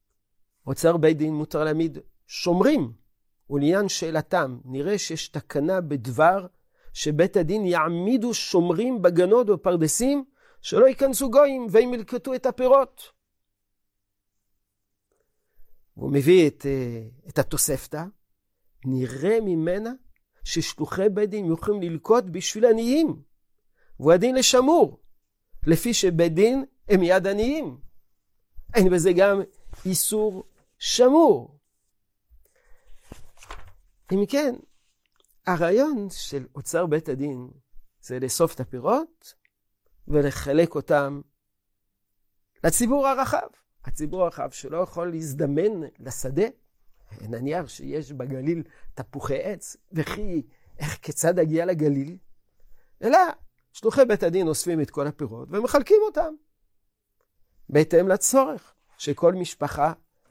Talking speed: 100 wpm